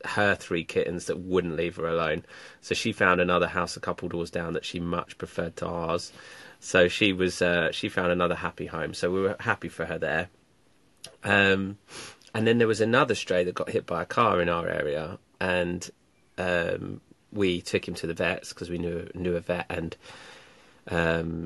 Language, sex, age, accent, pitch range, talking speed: English, male, 30-49, British, 85-100 Hz, 200 wpm